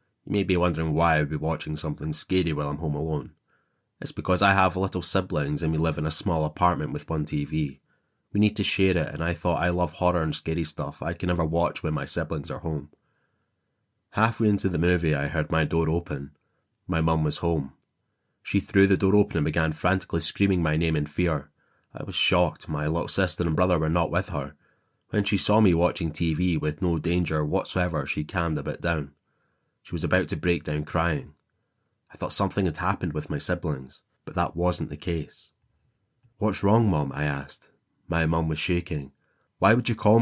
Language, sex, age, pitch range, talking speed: English, male, 20-39, 75-95 Hz, 205 wpm